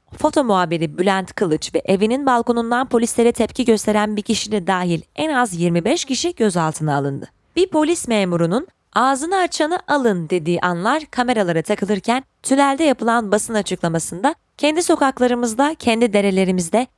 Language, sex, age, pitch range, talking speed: Turkish, female, 20-39, 180-270 Hz, 135 wpm